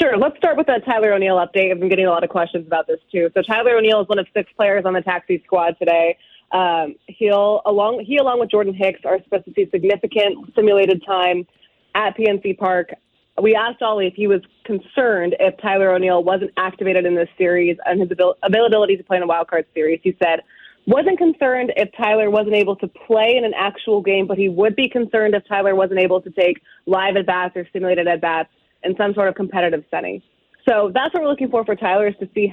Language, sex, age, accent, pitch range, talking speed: English, female, 20-39, American, 185-215 Hz, 225 wpm